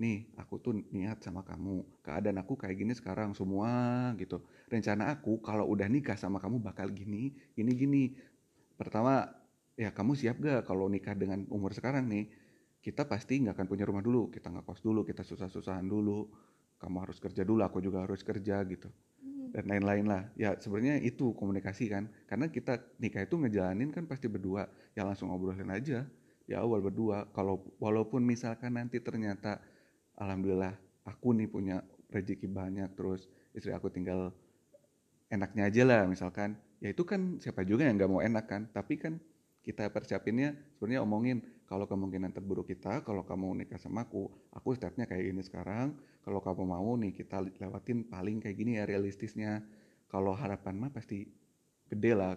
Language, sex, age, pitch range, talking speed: Indonesian, male, 30-49, 95-115 Hz, 170 wpm